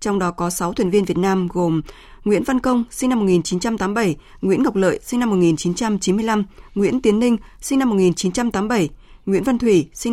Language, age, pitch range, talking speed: Vietnamese, 20-39, 180-235 Hz, 185 wpm